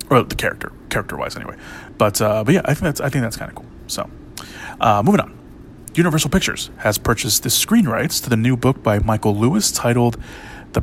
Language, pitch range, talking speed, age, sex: English, 110-135 Hz, 200 wpm, 30-49, male